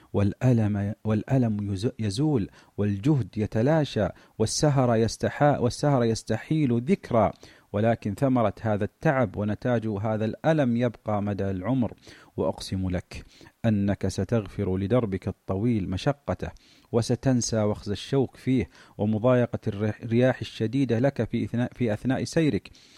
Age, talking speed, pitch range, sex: 40-59, 100 wpm, 100-120 Hz, male